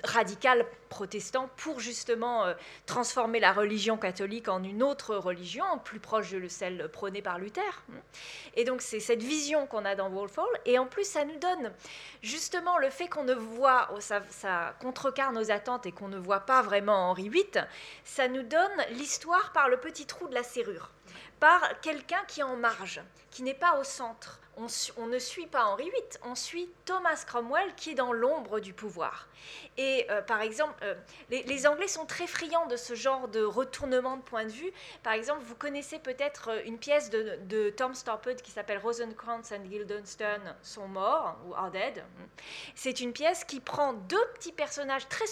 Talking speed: 190 wpm